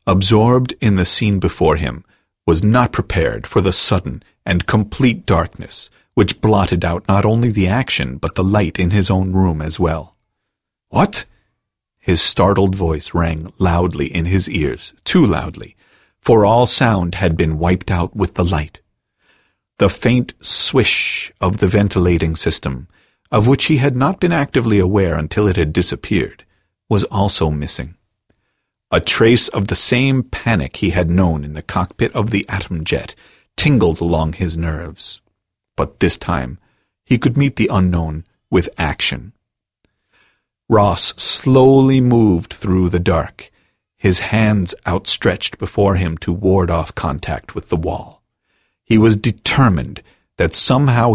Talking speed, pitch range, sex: 150 wpm, 85-110 Hz, male